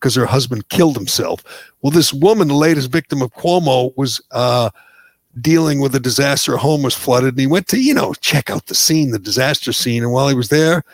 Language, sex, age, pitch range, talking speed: English, male, 60-79, 125-155 Hz, 225 wpm